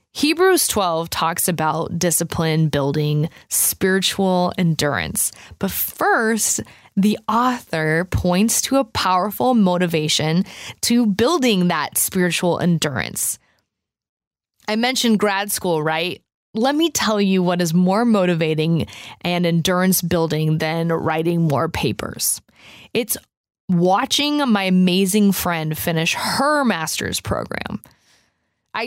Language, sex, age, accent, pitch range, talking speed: English, female, 20-39, American, 165-225 Hz, 110 wpm